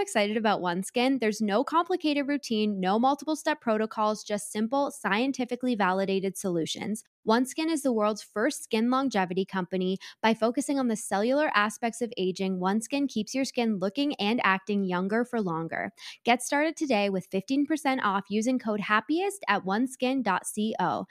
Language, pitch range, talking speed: English, 190-255 Hz, 150 wpm